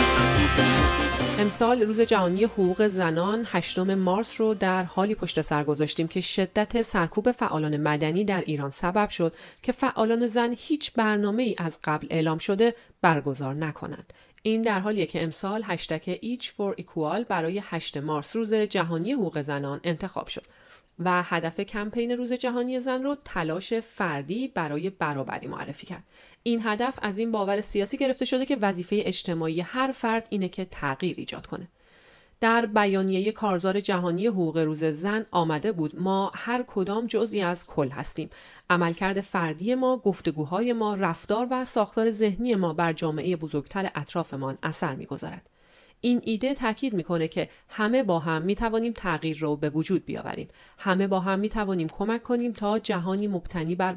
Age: 30-49